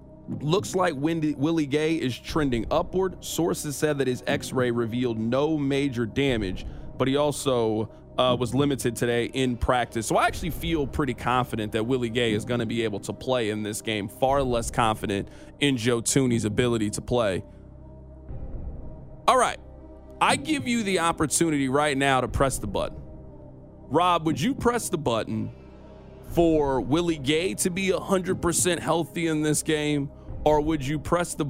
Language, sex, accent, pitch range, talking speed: English, male, American, 120-155 Hz, 170 wpm